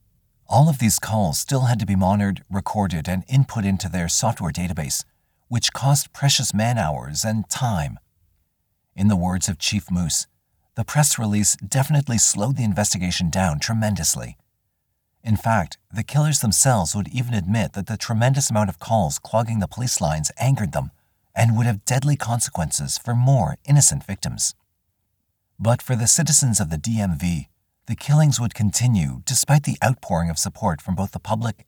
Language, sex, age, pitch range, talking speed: English, male, 50-69, 90-120 Hz, 165 wpm